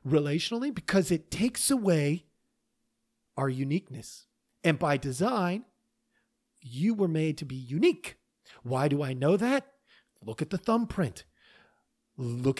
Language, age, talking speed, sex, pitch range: English, 40-59, 125 wpm, male, 145-225 Hz